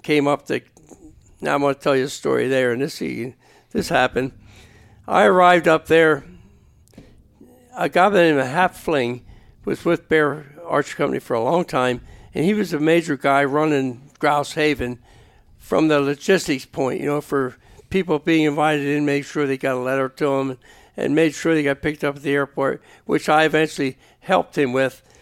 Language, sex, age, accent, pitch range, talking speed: English, male, 60-79, American, 130-165 Hz, 190 wpm